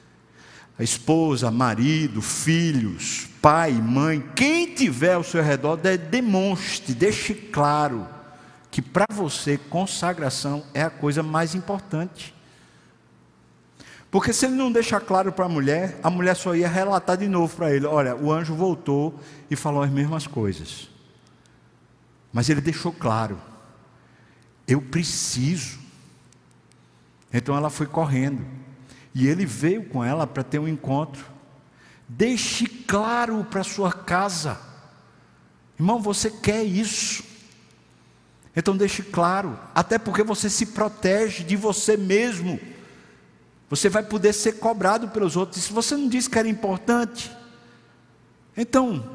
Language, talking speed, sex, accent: Portuguese, 130 wpm, male, Brazilian